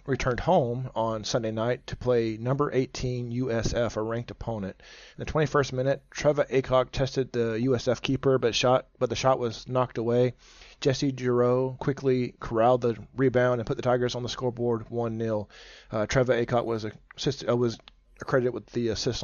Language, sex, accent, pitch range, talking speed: English, male, American, 115-130 Hz, 175 wpm